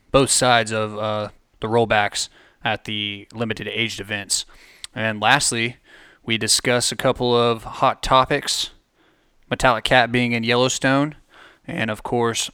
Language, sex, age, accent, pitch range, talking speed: English, male, 20-39, American, 110-125 Hz, 130 wpm